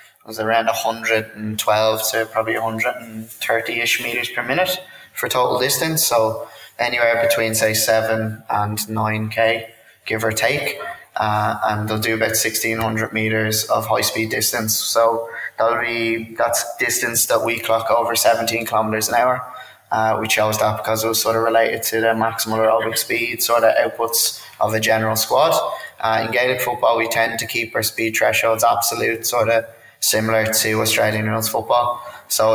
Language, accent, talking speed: English, British, 165 wpm